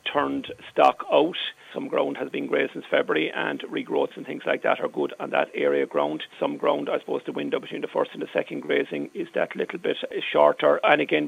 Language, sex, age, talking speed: English, male, 40-59, 225 wpm